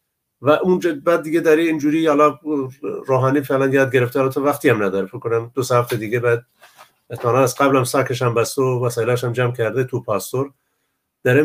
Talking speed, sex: 190 wpm, male